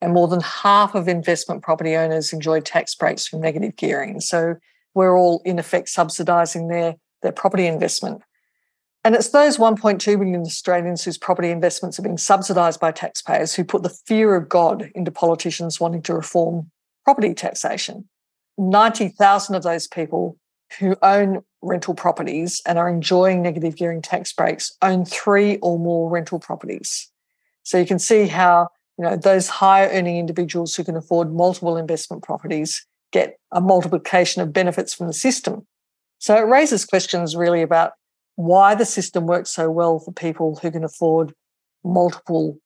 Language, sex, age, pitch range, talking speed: English, female, 50-69, 165-195 Hz, 160 wpm